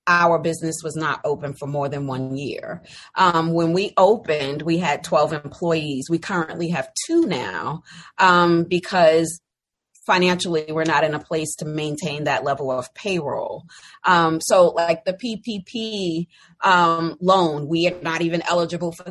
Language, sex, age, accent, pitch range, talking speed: English, female, 30-49, American, 160-190 Hz, 155 wpm